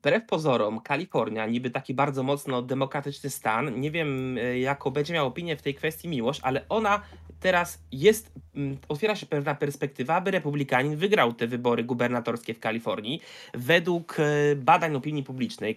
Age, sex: 20-39, male